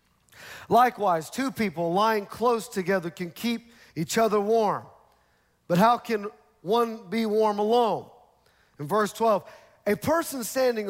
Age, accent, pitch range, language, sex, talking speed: 40-59, American, 170-225 Hz, English, male, 130 wpm